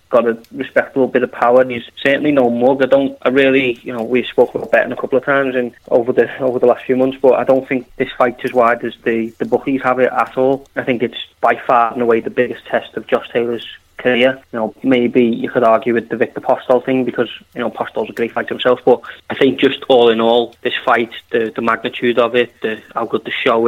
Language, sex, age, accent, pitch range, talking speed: English, male, 20-39, British, 115-130 Hz, 260 wpm